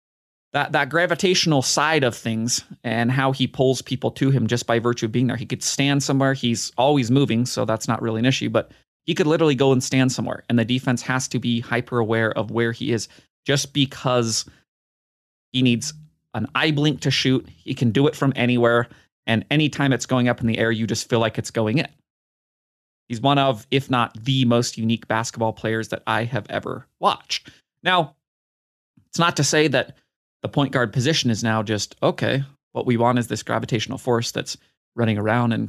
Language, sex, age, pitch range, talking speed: English, male, 30-49, 115-140 Hz, 205 wpm